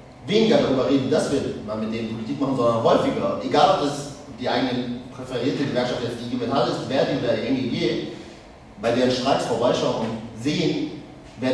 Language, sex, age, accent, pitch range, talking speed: German, male, 40-59, German, 100-125 Hz, 170 wpm